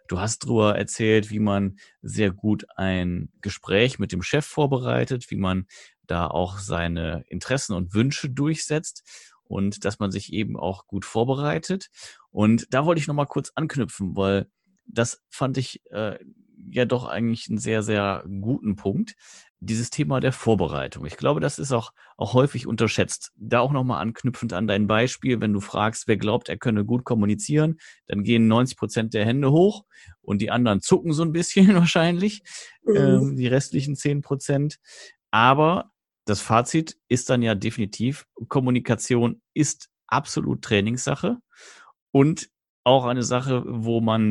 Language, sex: German, male